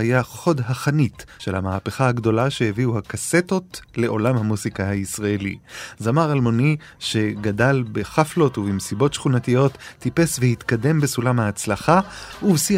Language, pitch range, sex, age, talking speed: Hebrew, 110-145 Hz, male, 30-49, 105 wpm